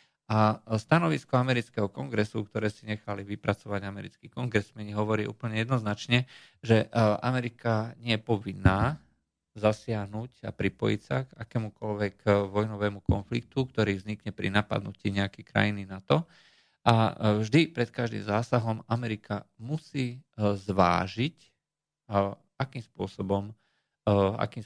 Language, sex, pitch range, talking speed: Slovak, male, 100-120 Hz, 110 wpm